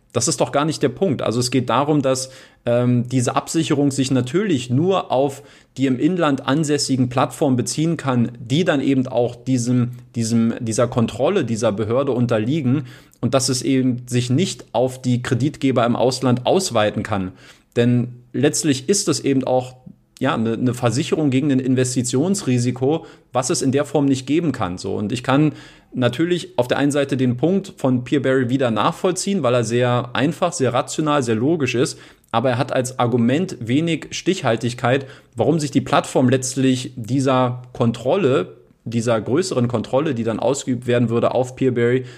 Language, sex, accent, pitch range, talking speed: German, male, German, 120-140 Hz, 170 wpm